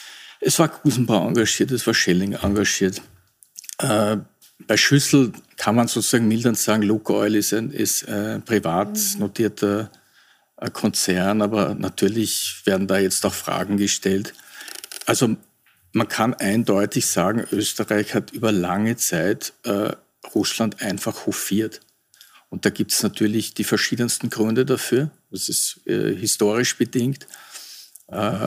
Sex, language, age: male, German, 50-69